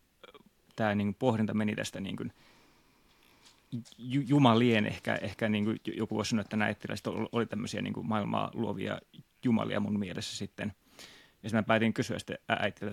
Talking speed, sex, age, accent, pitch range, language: 160 wpm, male, 20-39, native, 105-120 Hz, Finnish